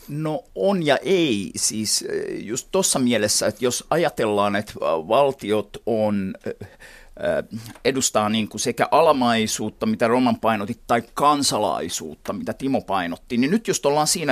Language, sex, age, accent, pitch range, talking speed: Finnish, male, 50-69, native, 115-190 Hz, 135 wpm